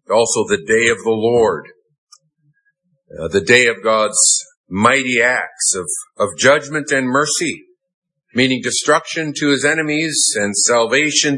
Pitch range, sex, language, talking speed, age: 130-165 Hz, male, English, 130 wpm, 50-69